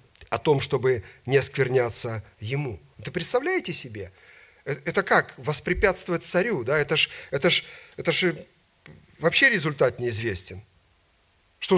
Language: Russian